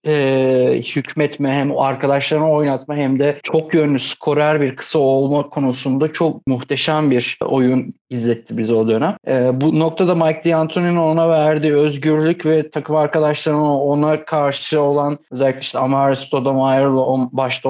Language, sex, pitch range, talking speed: Turkish, male, 135-155 Hz, 140 wpm